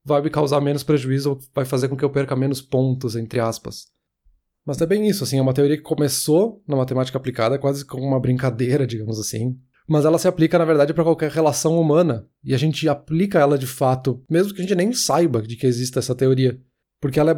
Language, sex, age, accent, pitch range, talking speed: Portuguese, male, 20-39, Brazilian, 125-145 Hz, 225 wpm